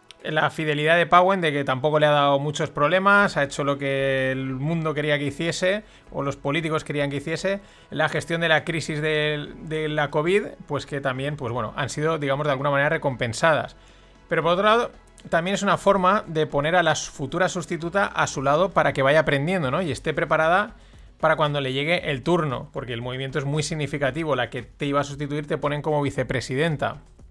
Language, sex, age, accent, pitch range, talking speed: Spanish, male, 30-49, Spanish, 140-170 Hz, 205 wpm